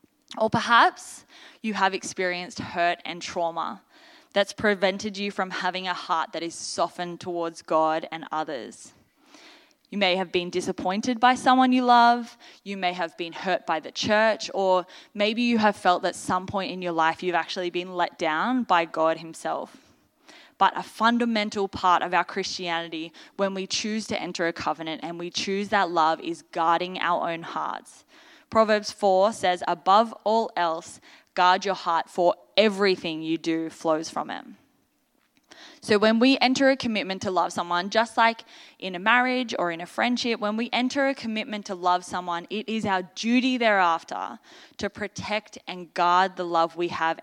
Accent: Australian